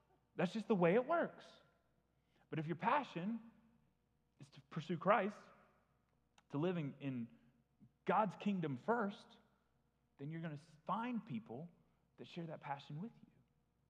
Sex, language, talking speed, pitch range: male, English, 135 wpm, 140-190 Hz